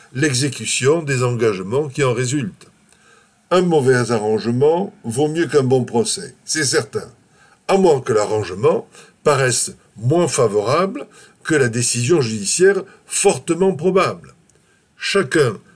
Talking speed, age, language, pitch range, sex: 115 wpm, 60-79, French, 125-185 Hz, male